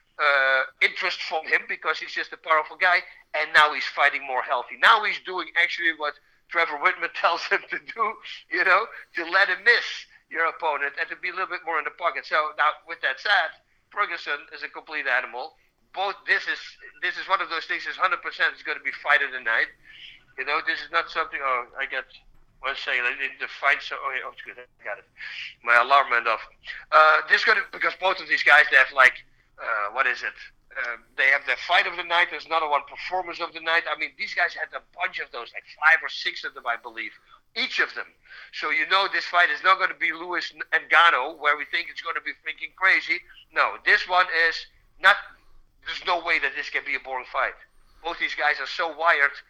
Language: English